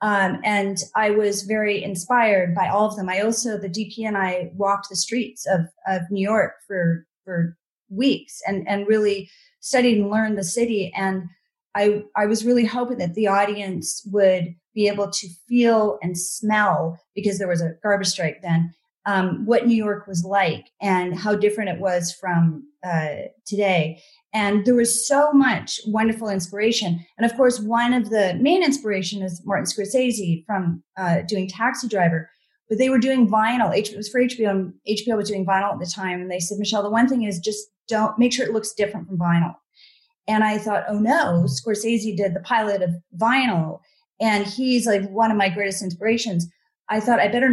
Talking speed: 190 wpm